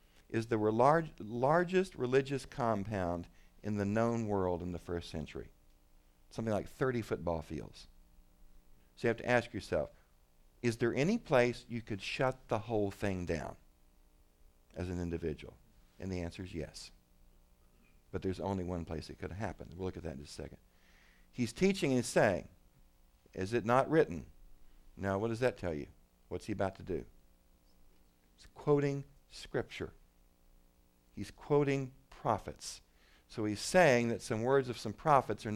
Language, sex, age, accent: English, male, 50-69, American